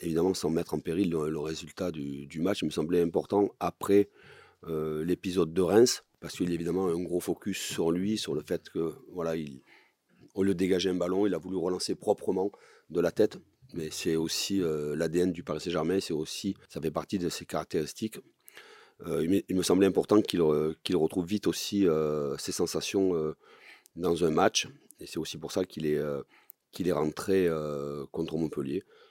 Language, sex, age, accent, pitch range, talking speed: French, male, 40-59, French, 80-90 Hz, 200 wpm